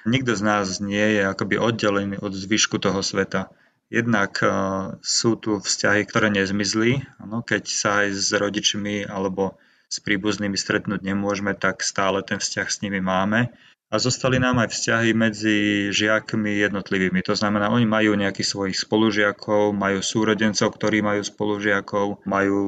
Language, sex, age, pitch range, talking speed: Slovak, male, 30-49, 100-110 Hz, 150 wpm